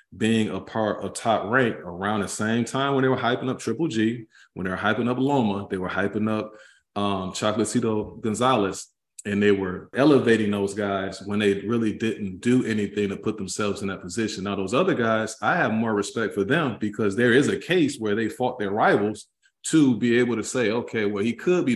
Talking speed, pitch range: 215 wpm, 95-110 Hz